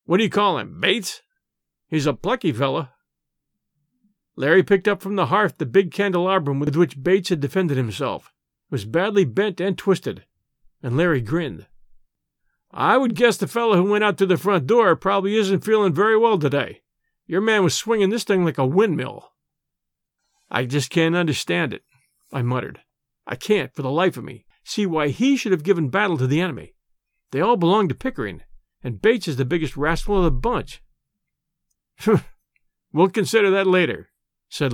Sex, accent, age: male, American, 50-69